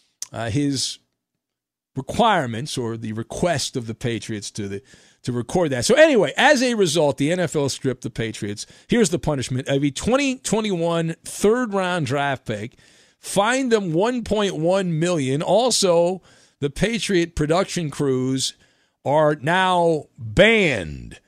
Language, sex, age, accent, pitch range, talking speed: English, male, 50-69, American, 140-190 Hz, 125 wpm